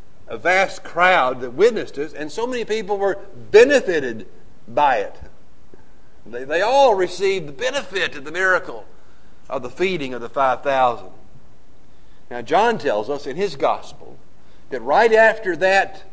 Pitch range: 135-220 Hz